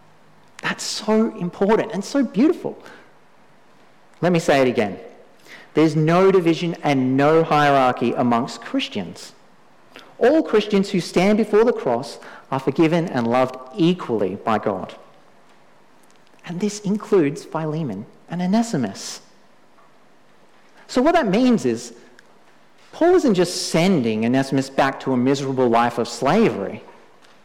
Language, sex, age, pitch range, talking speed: English, male, 40-59, 140-215 Hz, 120 wpm